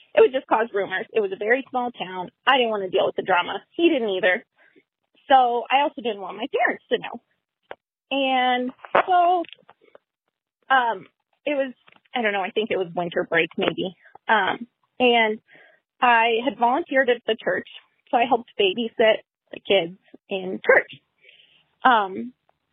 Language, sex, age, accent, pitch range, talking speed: English, female, 20-39, American, 210-290 Hz, 165 wpm